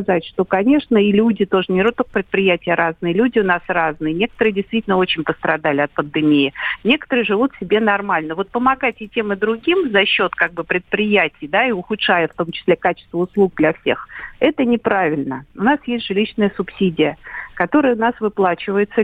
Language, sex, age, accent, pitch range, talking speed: Russian, female, 50-69, native, 180-225 Hz, 175 wpm